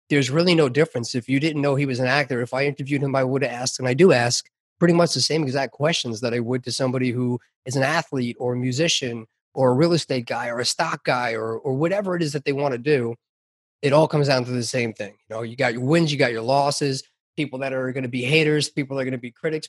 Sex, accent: male, American